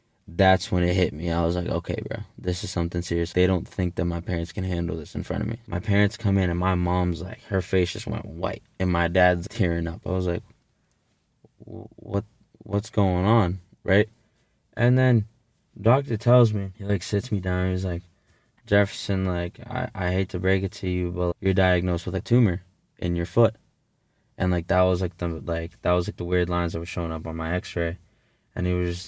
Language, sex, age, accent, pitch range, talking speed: English, male, 20-39, American, 90-110 Hz, 225 wpm